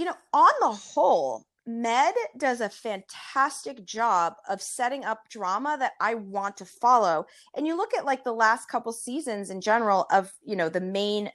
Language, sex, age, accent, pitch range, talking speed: English, female, 30-49, American, 185-250 Hz, 185 wpm